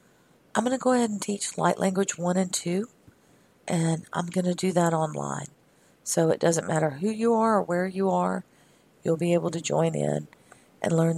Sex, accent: female, American